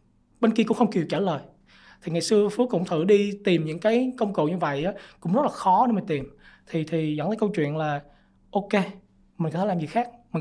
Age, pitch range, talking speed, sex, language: 20-39, 145-195 Hz, 255 wpm, male, Vietnamese